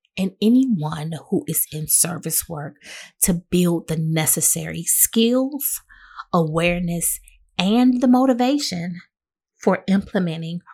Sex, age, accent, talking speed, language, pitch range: female, 30-49, American, 100 wpm, English, 165-240 Hz